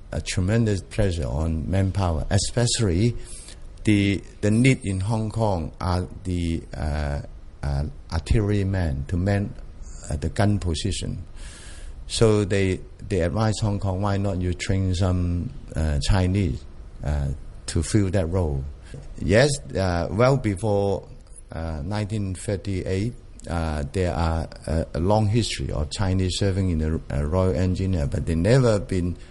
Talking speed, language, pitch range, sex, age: 135 wpm, English, 80-110 Hz, male, 50-69